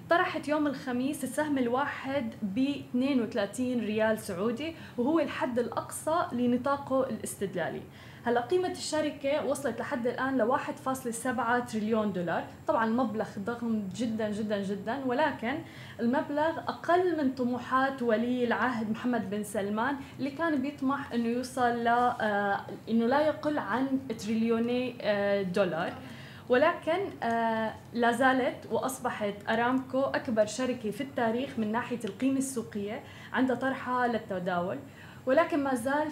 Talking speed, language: 115 wpm, Arabic